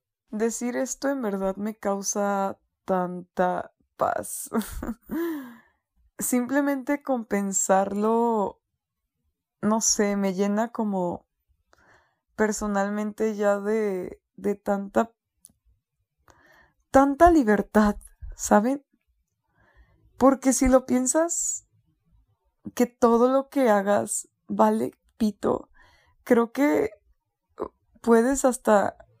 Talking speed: 80 wpm